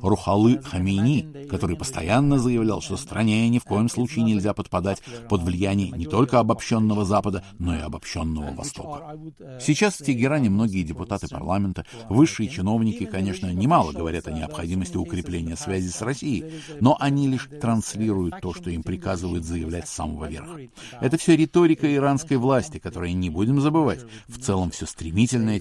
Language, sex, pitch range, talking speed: Russian, male, 90-130 Hz, 150 wpm